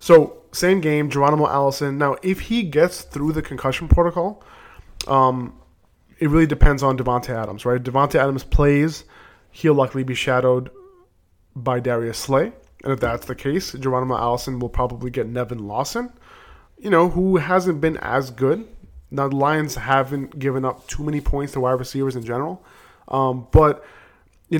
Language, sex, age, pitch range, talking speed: English, male, 20-39, 125-155 Hz, 165 wpm